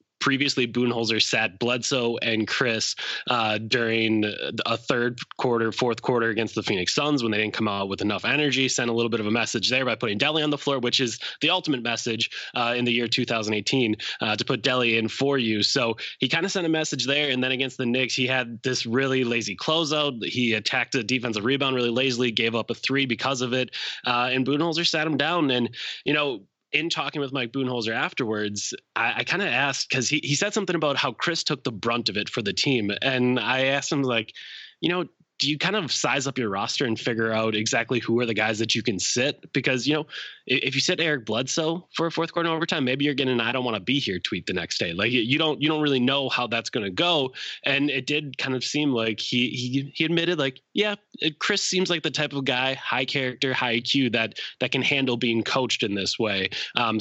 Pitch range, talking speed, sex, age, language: 115-140 Hz, 240 wpm, male, 20-39, English